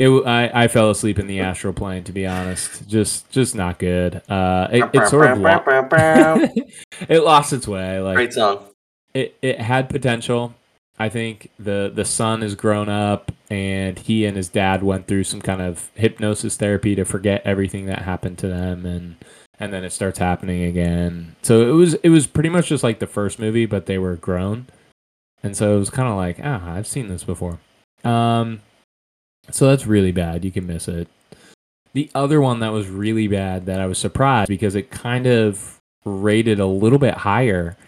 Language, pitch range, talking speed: English, 95-115 Hz, 190 wpm